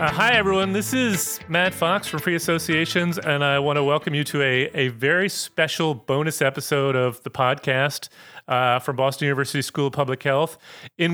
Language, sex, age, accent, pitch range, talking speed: English, male, 30-49, American, 135-160 Hz, 190 wpm